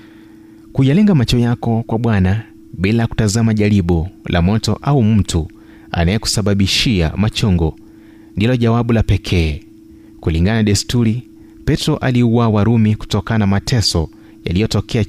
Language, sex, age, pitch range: Swahili, male, 30-49, 95-125 Hz